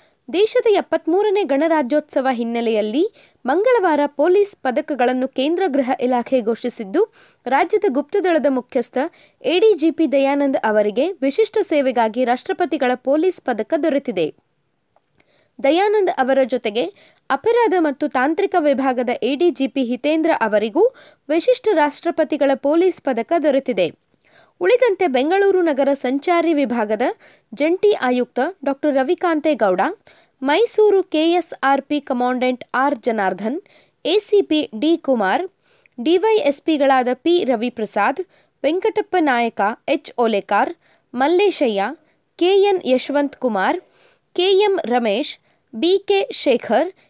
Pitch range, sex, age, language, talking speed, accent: 255-365 Hz, female, 20-39, Kannada, 85 wpm, native